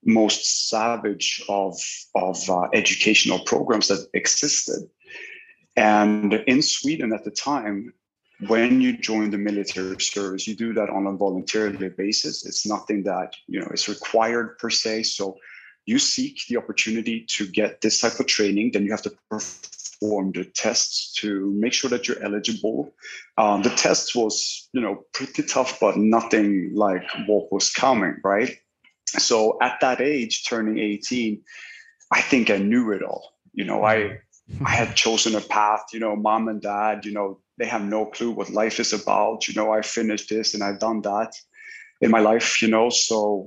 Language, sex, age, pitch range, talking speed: English, male, 30-49, 105-115 Hz, 175 wpm